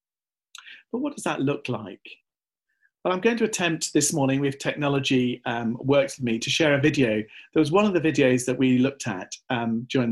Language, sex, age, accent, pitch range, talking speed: English, male, 40-59, British, 120-160 Hz, 210 wpm